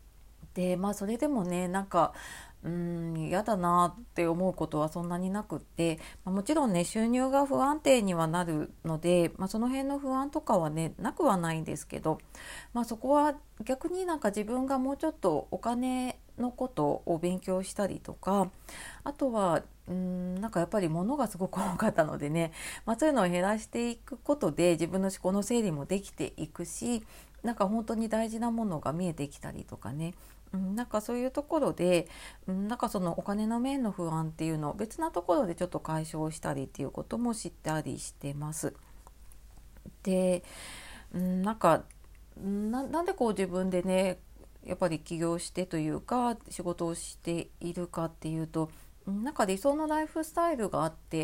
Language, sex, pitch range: Japanese, female, 170-240 Hz